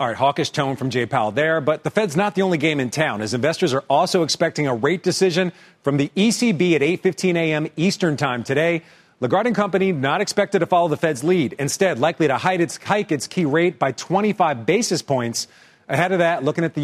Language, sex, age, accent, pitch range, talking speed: English, male, 40-59, American, 135-180 Hz, 215 wpm